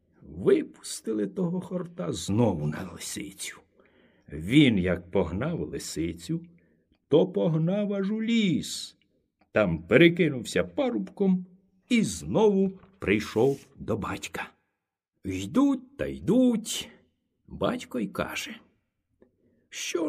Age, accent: 60-79, native